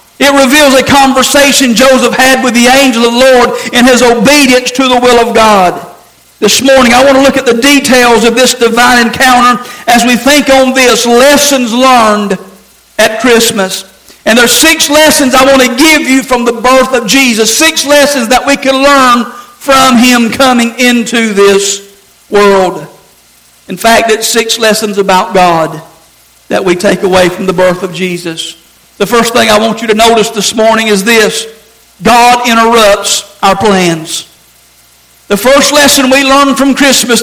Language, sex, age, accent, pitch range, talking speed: English, male, 50-69, American, 225-265 Hz, 175 wpm